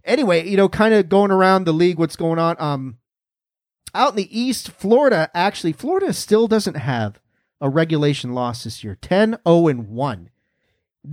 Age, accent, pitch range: 30-49, American, 135-195 Hz